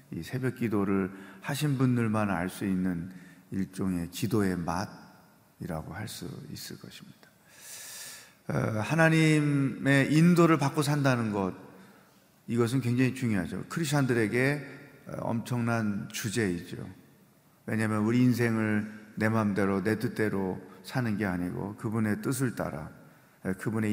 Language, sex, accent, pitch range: Korean, male, native, 100-135 Hz